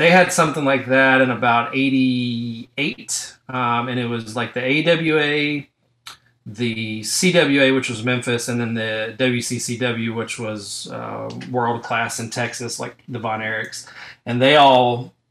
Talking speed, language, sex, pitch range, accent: 145 wpm, English, male, 115-130 Hz, American